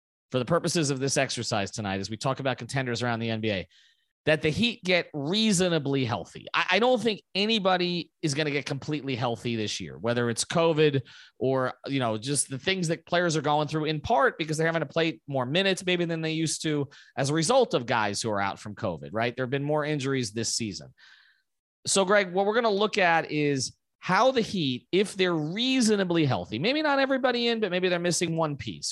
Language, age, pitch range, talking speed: English, 30-49, 125-175 Hz, 220 wpm